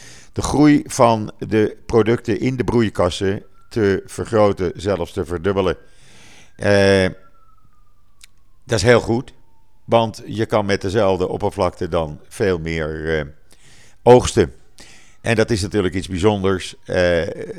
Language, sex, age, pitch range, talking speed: Dutch, male, 50-69, 95-115 Hz, 125 wpm